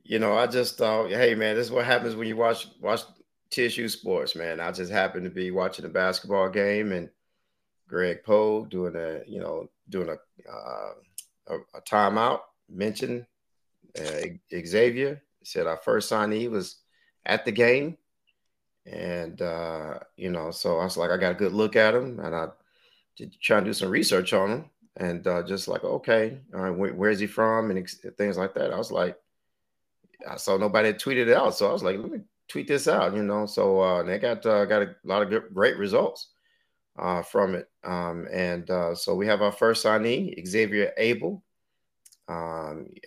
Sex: male